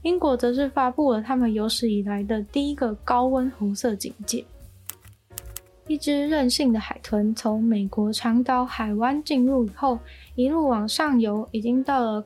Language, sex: Chinese, female